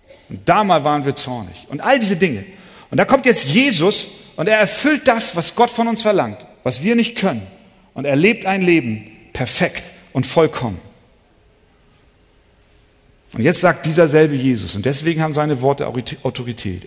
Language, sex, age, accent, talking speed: German, male, 50-69, German, 165 wpm